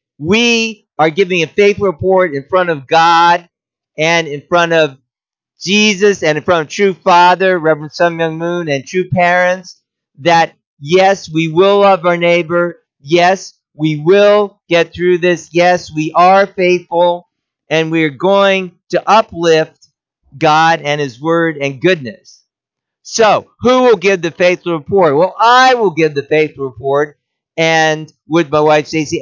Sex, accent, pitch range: male, American, 155-185 Hz